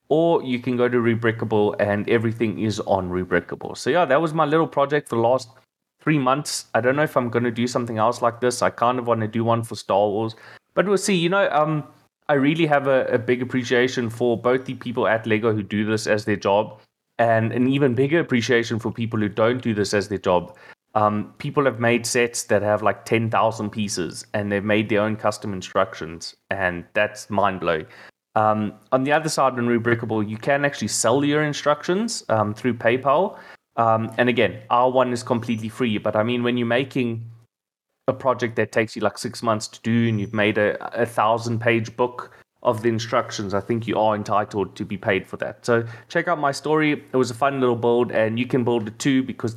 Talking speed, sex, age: 220 wpm, male, 20-39